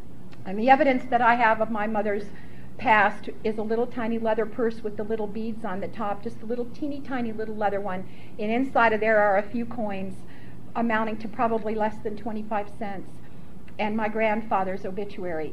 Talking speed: 195 wpm